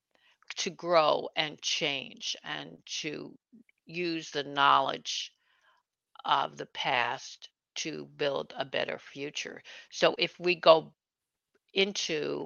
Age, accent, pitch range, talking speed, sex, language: 60-79, American, 150-190 Hz, 105 wpm, female, English